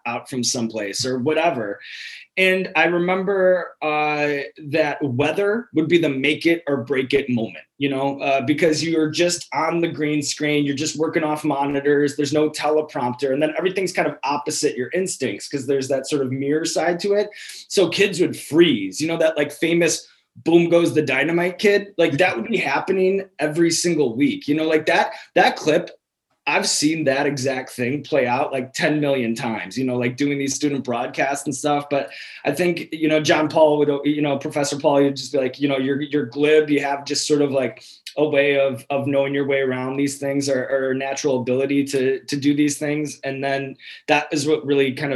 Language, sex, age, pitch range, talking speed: English, male, 20-39, 135-160 Hz, 205 wpm